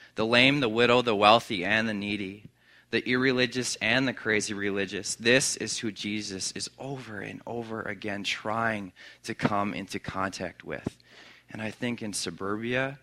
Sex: male